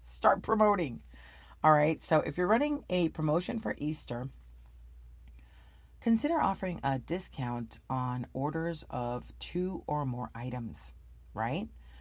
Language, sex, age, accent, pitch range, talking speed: English, female, 40-59, American, 120-195 Hz, 120 wpm